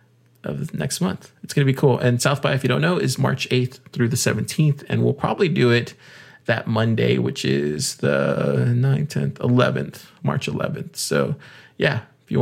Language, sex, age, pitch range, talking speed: English, male, 20-39, 115-145 Hz, 195 wpm